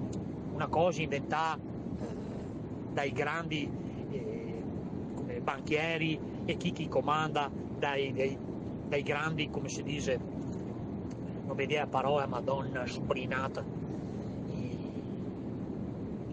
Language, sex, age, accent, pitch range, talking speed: Italian, male, 40-59, native, 155-230 Hz, 90 wpm